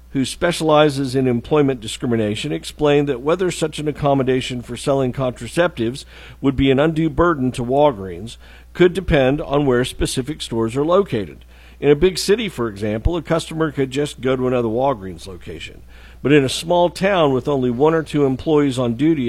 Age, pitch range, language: 50-69, 115-150 Hz, English